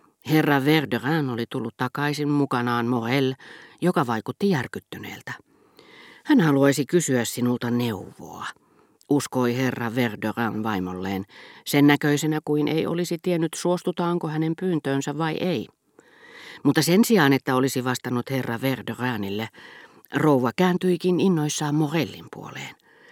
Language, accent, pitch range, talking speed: Finnish, native, 115-150 Hz, 110 wpm